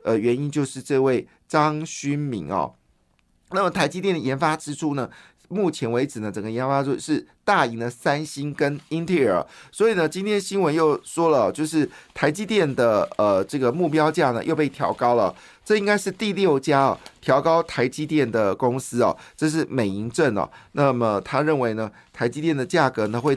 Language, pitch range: Chinese, 125-165 Hz